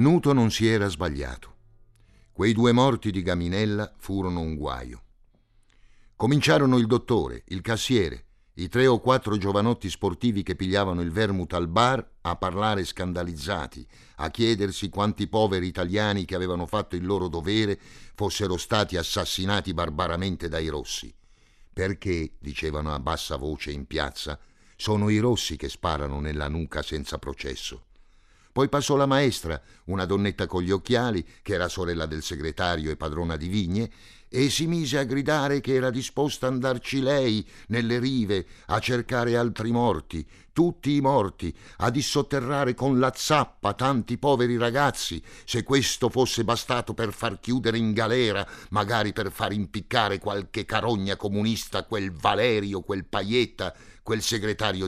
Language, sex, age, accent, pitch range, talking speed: Italian, male, 50-69, native, 90-120 Hz, 145 wpm